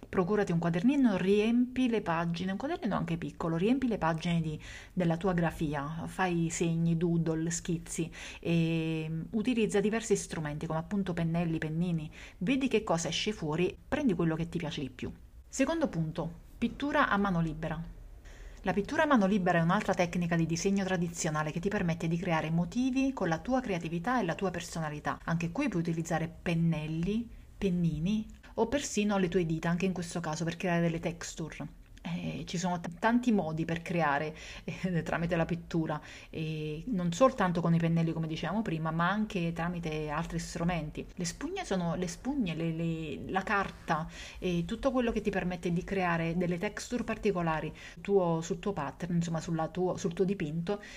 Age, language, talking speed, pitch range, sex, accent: 30-49, Italian, 175 wpm, 165-200 Hz, female, native